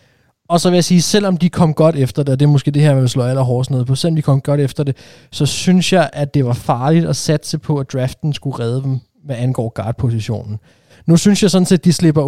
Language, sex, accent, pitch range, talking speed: Danish, male, native, 125-160 Hz, 265 wpm